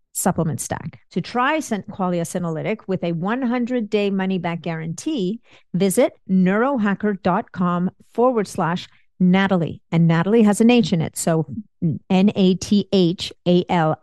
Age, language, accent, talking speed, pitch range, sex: 50-69, English, American, 135 wpm, 180-225 Hz, female